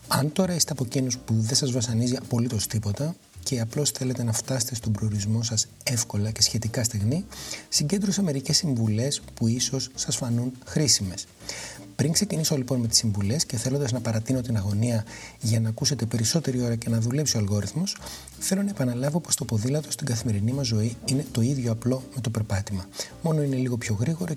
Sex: male